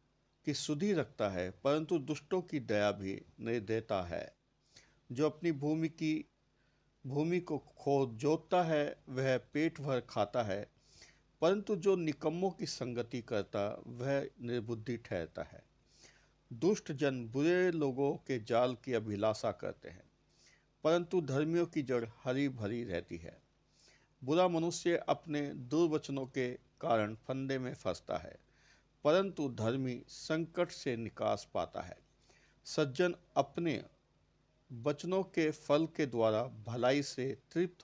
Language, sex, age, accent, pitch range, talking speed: Hindi, male, 50-69, native, 120-160 Hz, 130 wpm